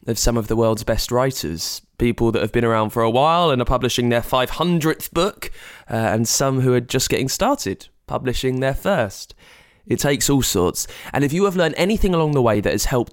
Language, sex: English, male